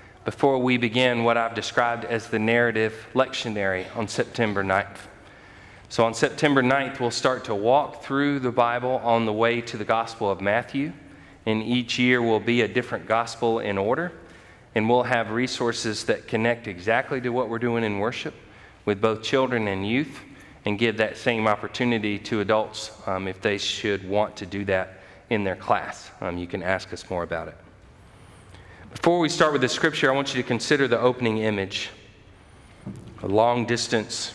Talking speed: 180 wpm